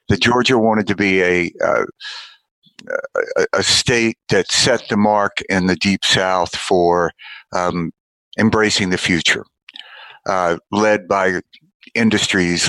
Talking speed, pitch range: 130 wpm, 100-165 Hz